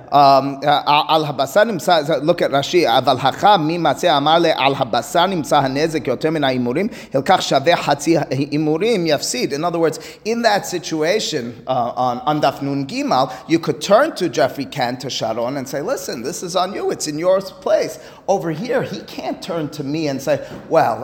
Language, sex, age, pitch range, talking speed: English, male, 30-49, 140-185 Hz, 120 wpm